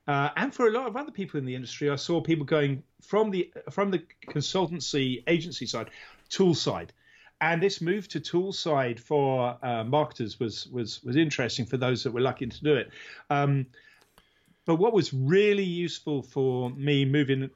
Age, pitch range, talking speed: 40-59, 130-175 Hz, 185 wpm